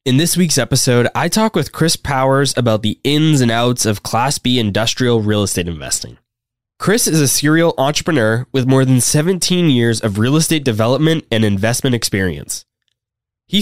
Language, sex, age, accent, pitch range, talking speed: English, male, 10-29, American, 110-145 Hz, 170 wpm